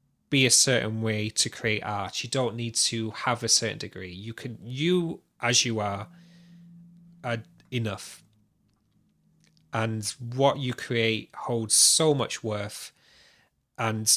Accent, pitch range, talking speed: British, 110-135 Hz, 135 wpm